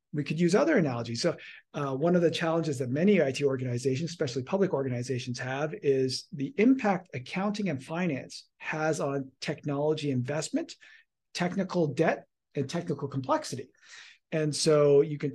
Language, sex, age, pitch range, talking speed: English, male, 40-59, 135-180 Hz, 150 wpm